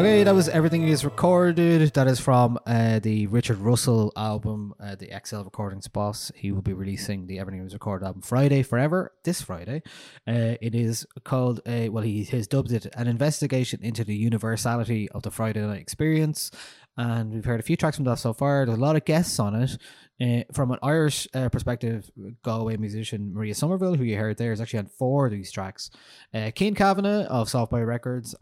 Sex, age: male, 20-39